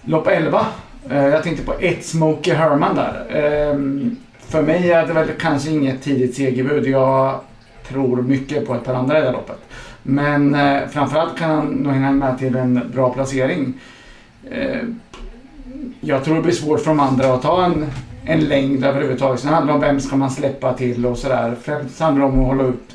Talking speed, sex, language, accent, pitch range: 180 wpm, male, English, Swedish, 125-150 Hz